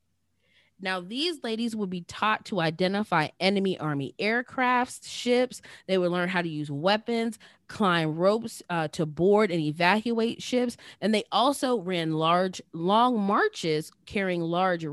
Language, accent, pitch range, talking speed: English, American, 170-230 Hz, 145 wpm